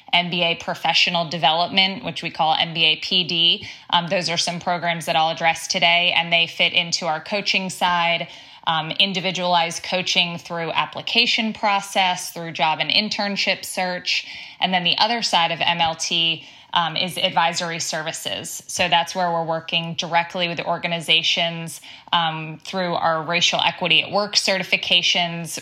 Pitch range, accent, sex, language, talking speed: 165-185 Hz, American, female, English, 150 wpm